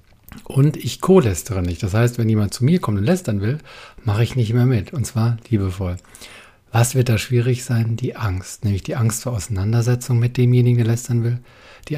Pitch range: 105-130 Hz